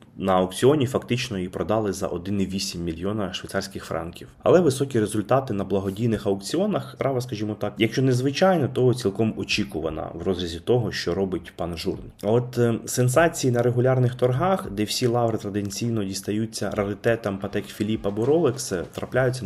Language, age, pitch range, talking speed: Ukrainian, 30-49, 95-115 Hz, 150 wpm